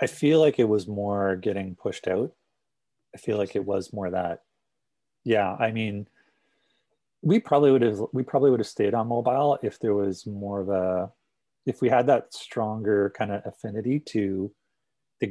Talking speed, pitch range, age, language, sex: 180 wpm, 95-115 Hz, 30-49, English, male